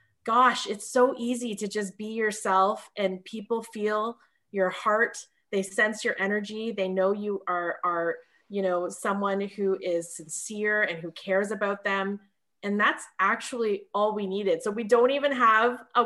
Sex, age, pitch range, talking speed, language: female, 20-39, 200-260 Hz, 170 wpm, English